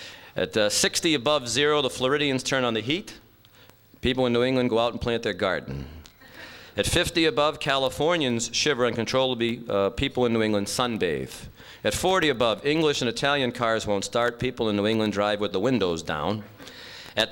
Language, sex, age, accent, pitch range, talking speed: English, male, 40-59, American, 110-140 Hz, 185 wpm